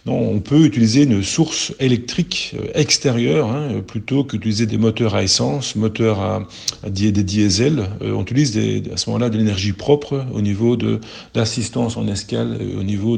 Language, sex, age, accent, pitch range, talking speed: French, male, 40-59, French, 105-125 Hz, 180 wpm